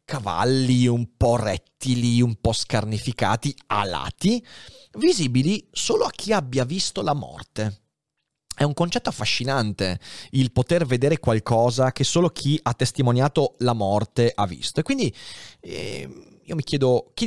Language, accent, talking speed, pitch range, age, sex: Italian, native, 135 wpm, 115-160 Hz, 30-49, male